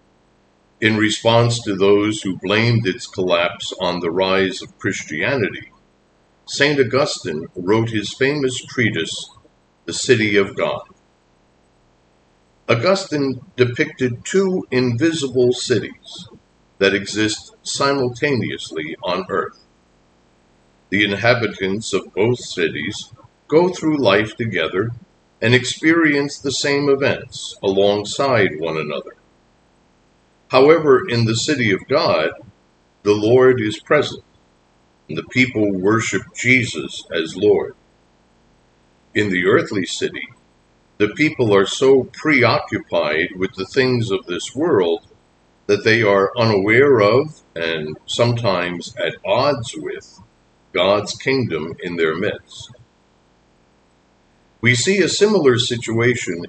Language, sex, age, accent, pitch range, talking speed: English, male, 50-69, American, 95-125 Hz, 110 wpm